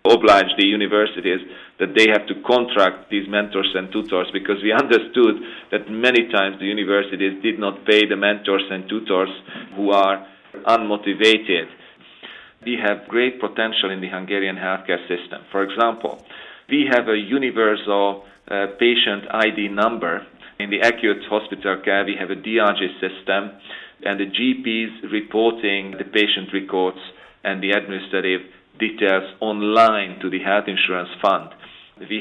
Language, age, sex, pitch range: English, 40-59, male, 95-110 Hz